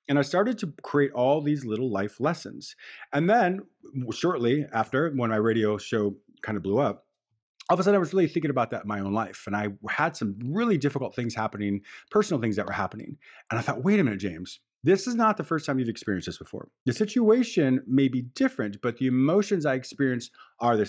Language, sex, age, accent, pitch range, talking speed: English, male, 30-49, American, 110-150 Hz, 225 wpm